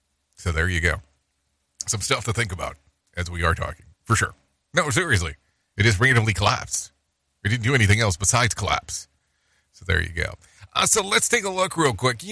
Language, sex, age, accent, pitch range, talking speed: English, male, 40-59, American, 90-130 Hz, 200 wpm